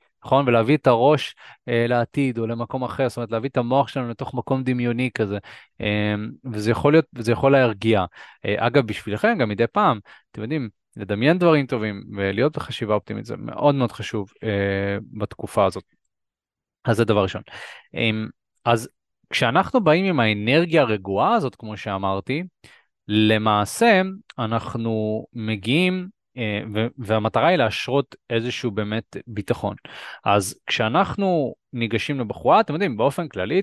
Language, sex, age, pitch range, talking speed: Hebrew, male, 20-39, 110-135 Hz, 130 wpm